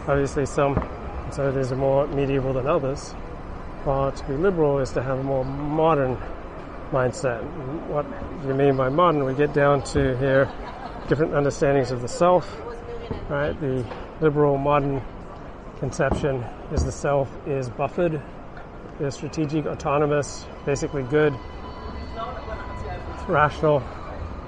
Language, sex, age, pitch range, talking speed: English, male, 30-49, 120-145 Hz, 125 wpm